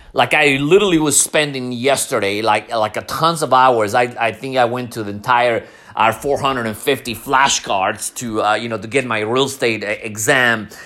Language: English